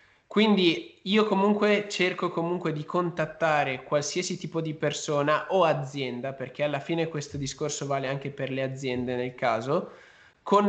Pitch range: 140-170 Hz